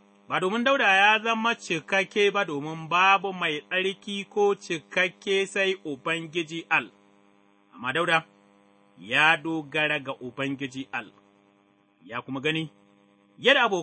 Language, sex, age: English, male, 30-49